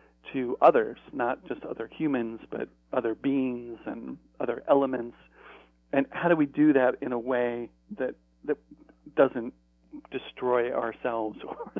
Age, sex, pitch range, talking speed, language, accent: 40-59, male, 115-140 Hz, 135 wpm, English, American